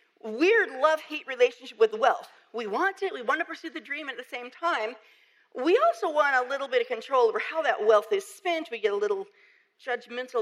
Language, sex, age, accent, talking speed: English, female, 50-69, American, 215 wpm